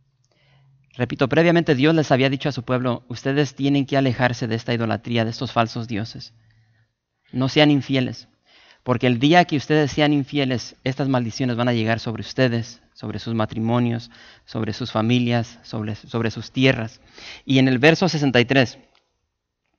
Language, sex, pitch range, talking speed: English, male, 125-160 Hz, 160 wpm